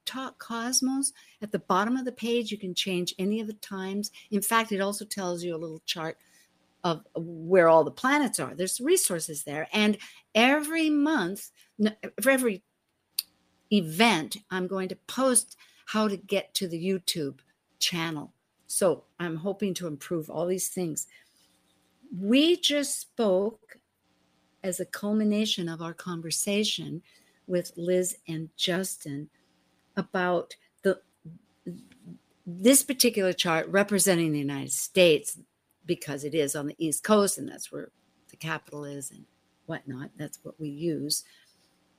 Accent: American